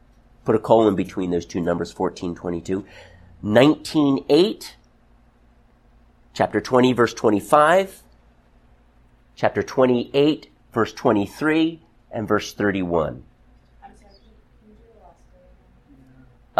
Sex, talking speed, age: male, 60 wpm, 50-69